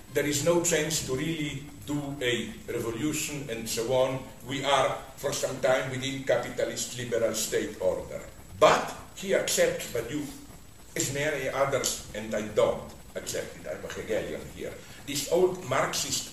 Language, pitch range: English, 135-210 Hz